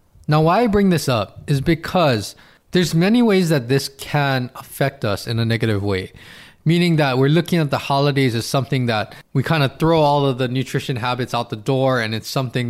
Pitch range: 125-165 Hz